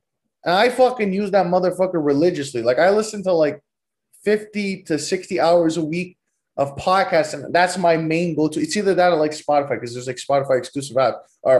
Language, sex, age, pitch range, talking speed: English, male, 20-39, 160-220 Hz, 190 wpm